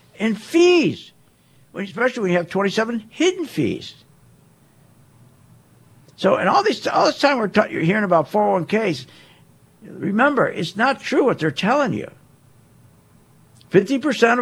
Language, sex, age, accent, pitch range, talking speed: English, male, 60-79, American, 135-210 Hz, 125 wpm